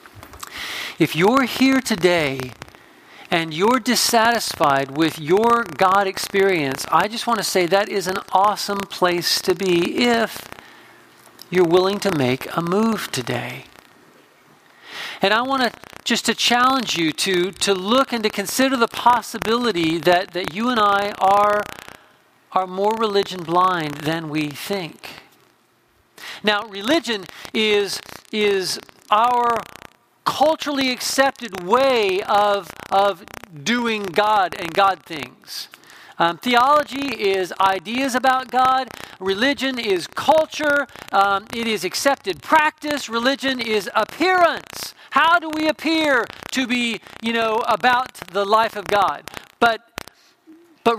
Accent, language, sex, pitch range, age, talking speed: American, English, male, 190-255 Hz, 50-69, 125 wpm